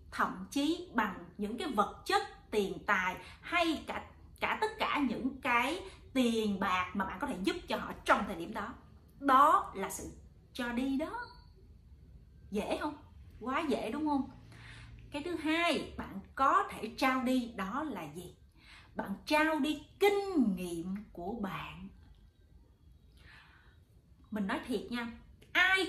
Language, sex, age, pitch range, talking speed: Vietnamese, female, 30-49, 215-345 Hz, 150 wpm